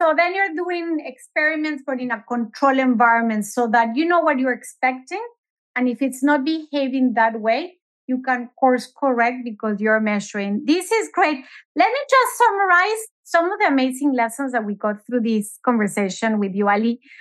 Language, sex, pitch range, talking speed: English, female, 230-330 Hz, 180 wpm